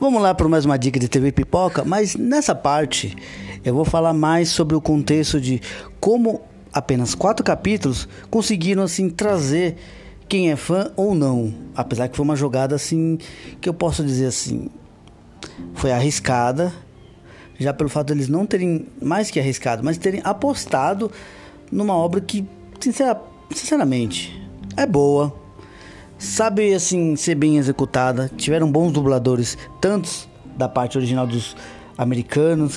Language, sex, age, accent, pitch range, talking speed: Portuguese, male, 20-39, Brazilian, 125-170 Hz, 145 wpm